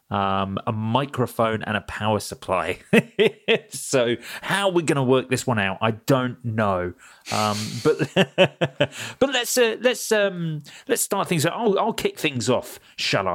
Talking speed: 160 wpm